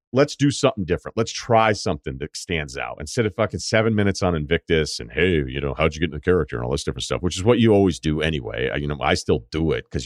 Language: English